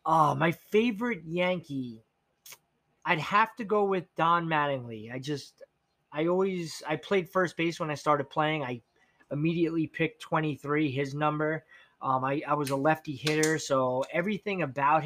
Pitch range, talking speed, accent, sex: 135-165 Hz, 160 wpm, American, male